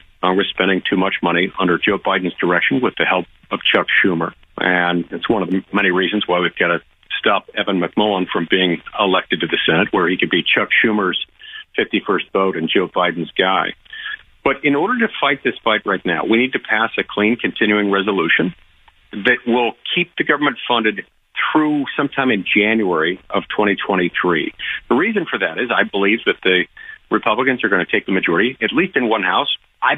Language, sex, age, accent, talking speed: English, male, 50-69, American, 200 wpm